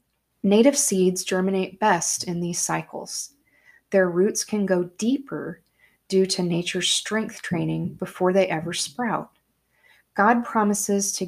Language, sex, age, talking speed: English, female, 30-49, 130 wpm